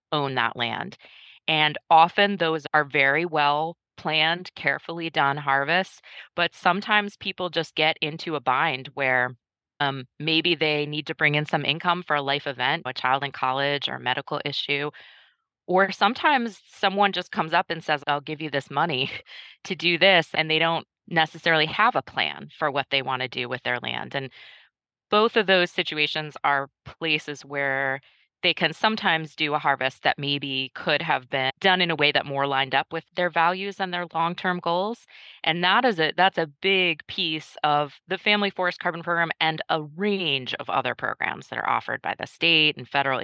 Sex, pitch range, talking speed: female, 140-175 Hz, 190 wpm